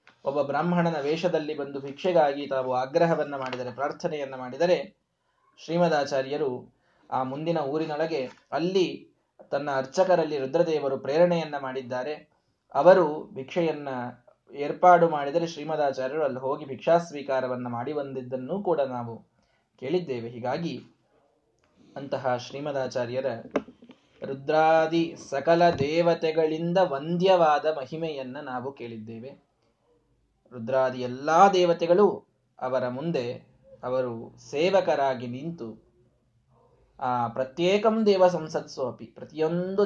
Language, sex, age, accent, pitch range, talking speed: Kannada, male, 20-39, native, 130-175 Hz, 85 wpm